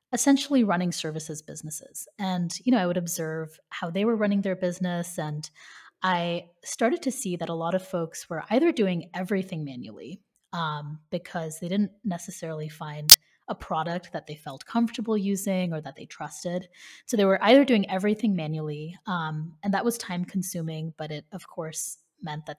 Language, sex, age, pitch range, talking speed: English, female, 20-39, 155-200 Hz, 180 wpm